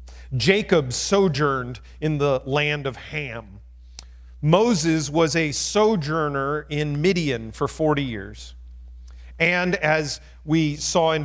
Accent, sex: American, male